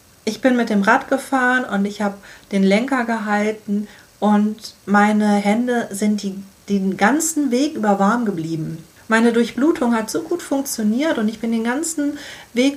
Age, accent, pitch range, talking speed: 40-59, German, 190-245 Hz, 165 wpm